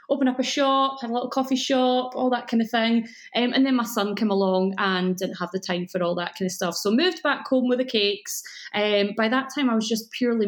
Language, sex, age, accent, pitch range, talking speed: English, female, 20-39, British, 195-255 Hz, 270 wpm